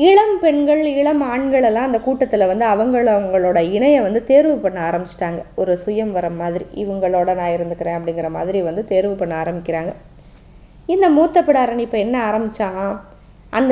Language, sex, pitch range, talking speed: Tamil, female, 190-265 Hz, 145 wpm